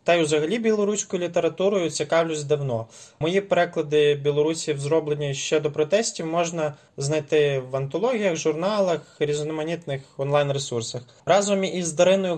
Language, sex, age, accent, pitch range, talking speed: Ukrainian, male, 20-39, native, 145-170 Hz, 115 wpm